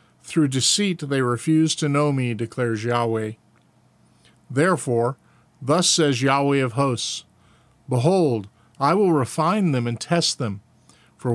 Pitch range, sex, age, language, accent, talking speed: 120-160 Hz, male, 50-69, English, American, 125 wpm